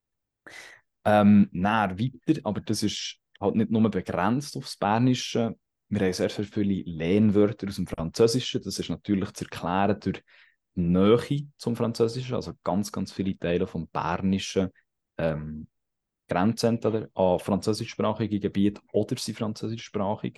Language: German